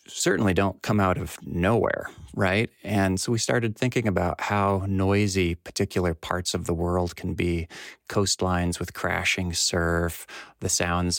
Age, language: 40-59, English